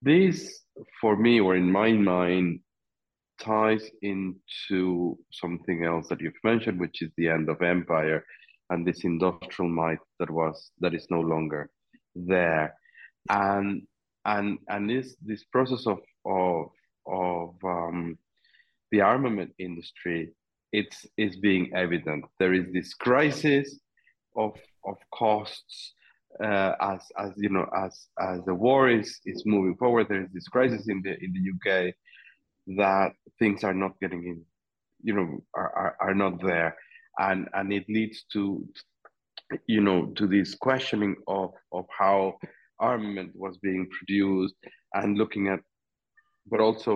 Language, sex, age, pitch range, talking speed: English, male, 40-59, 90-110 Hz, 140 wpm